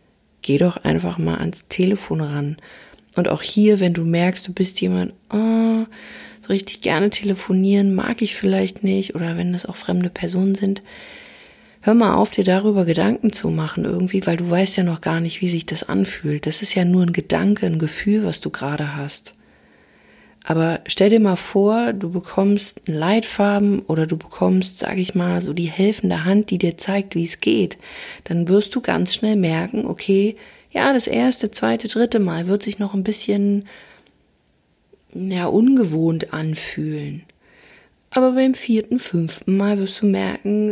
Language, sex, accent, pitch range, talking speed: German, female, German, 175-210 Hz, 170 wpm